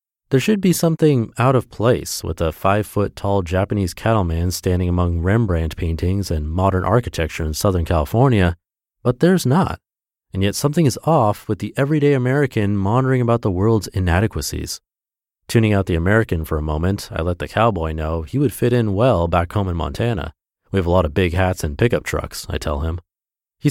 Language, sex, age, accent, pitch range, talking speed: English, male, 30-49, American, 85-115 Hz, 185 wpm